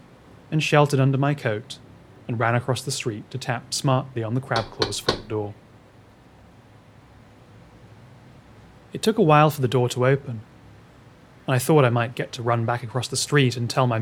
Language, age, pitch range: English, 30-49, 110-135 Hz